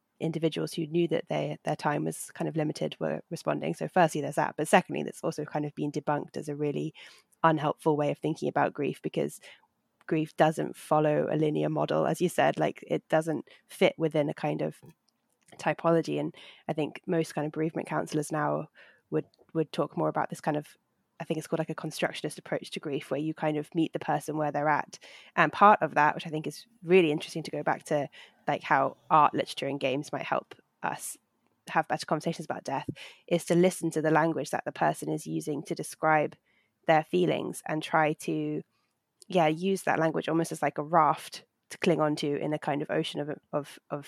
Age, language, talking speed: 20-39, English, 210 wpm